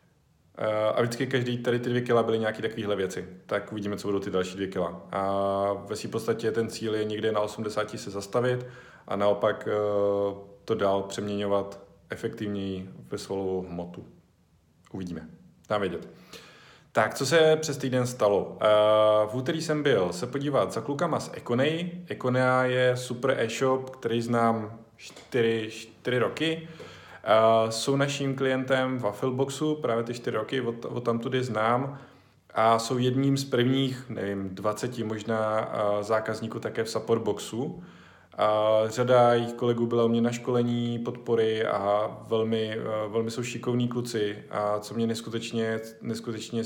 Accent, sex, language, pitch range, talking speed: native, male, Czech, 105-125 Hz, 145 wpm